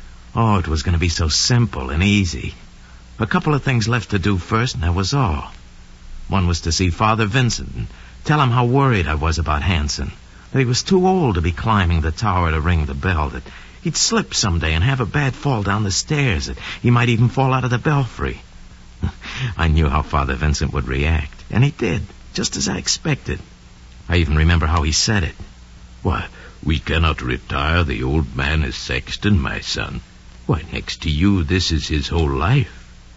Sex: male